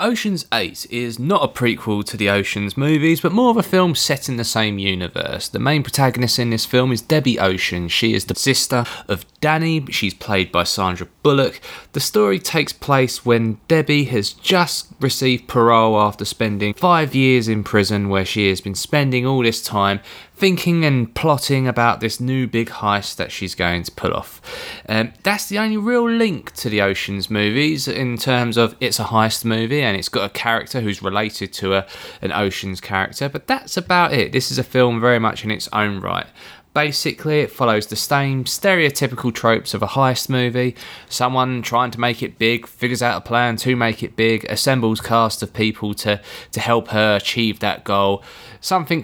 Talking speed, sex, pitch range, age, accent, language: 195 wpm, male, 105-135 Hz, 20-39, British, English